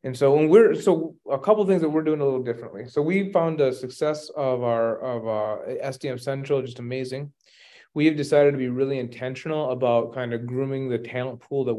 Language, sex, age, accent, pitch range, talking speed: English, male, 30-49, American, 120-140 Hz, 220 wpm